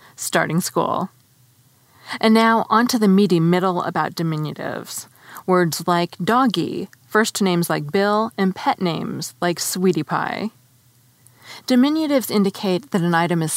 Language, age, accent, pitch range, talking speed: English, 30-49, American, 155-210 Hz, 130 wpm